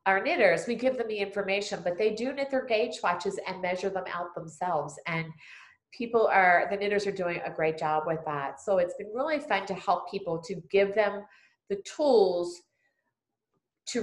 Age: 40-59